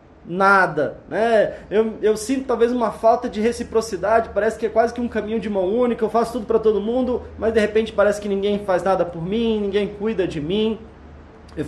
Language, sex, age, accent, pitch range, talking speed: Portuguese, male, 20-39, Brazilian, 200-235 Hz, 210 wpm